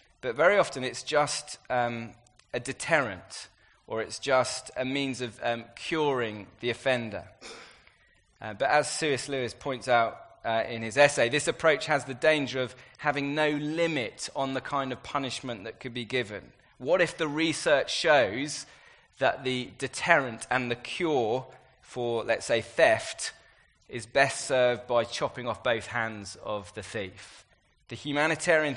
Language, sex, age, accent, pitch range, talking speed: English, male, 20-39, British, 115-145 Hz, 155 wpm